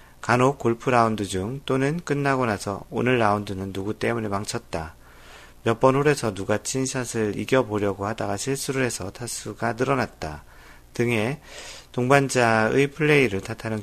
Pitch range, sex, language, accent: 95-130 Hz, male, Korean, native